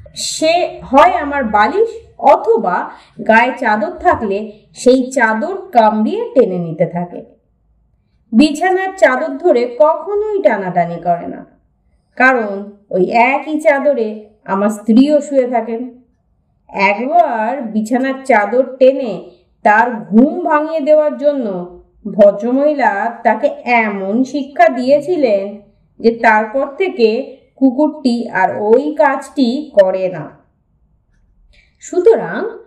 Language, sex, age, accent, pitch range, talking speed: Bengali, female, 30-49, native, 215-305 Hz, 85 wpm